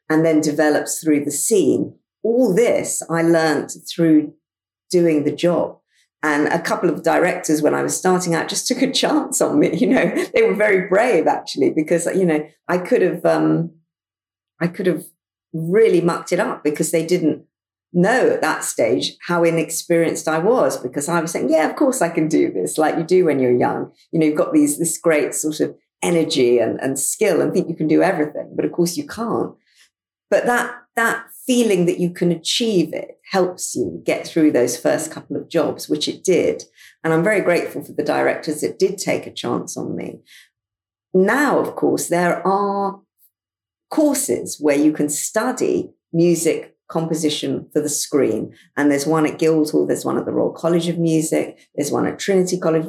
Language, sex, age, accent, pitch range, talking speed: English, female, 50-69, British, 155-180 Hz, 195 wpm